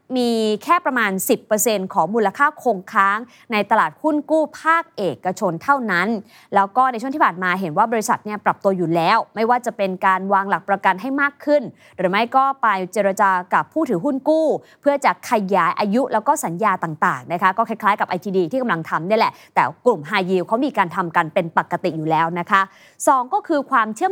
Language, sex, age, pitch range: Thai, female, 20-39, 195-265 Hz